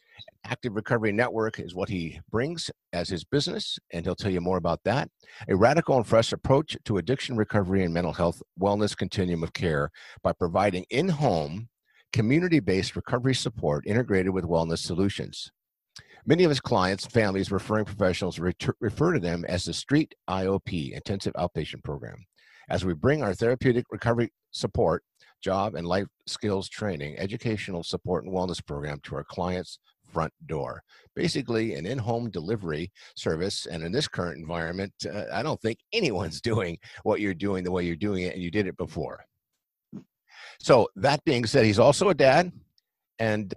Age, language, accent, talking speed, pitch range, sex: 50-69, English, American, 165 wpm, 90-120 Hz, male